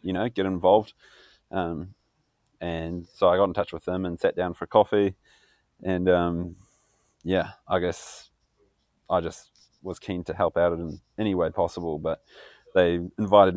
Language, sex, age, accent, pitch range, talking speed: English, male, 20-39, Australian, 85-95 Hz, 165 wpm